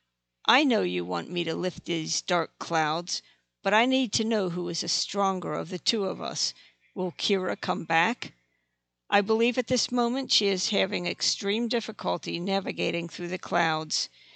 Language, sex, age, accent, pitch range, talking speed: English, female, 50-69, American, 155-210 Hz, 175 wpm